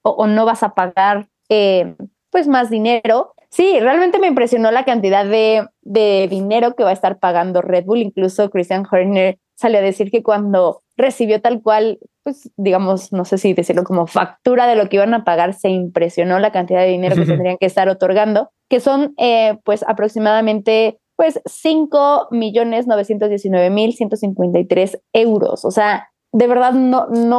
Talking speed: 165 wpm